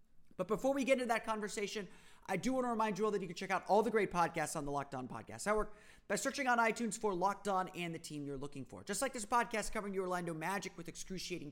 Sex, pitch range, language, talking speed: male, 150-205 Hz, English, 270 wpm